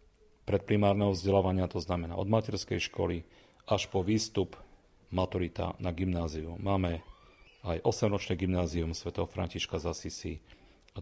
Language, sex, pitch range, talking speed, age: Slovak, male, 85-95 Hz, 120 wpm, 40-59